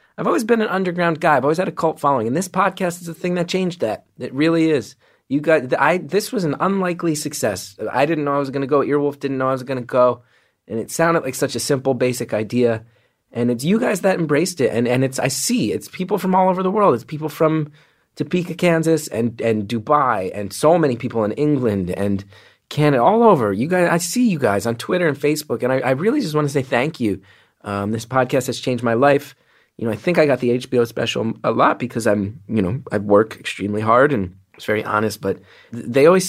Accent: American